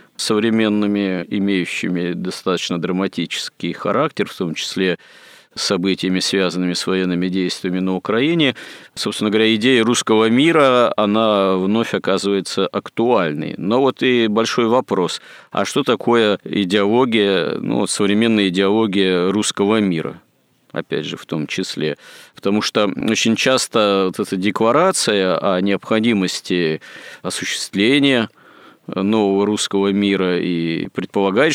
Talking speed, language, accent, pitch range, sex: 110 wpm, Russian, native, 95-110 Hz, male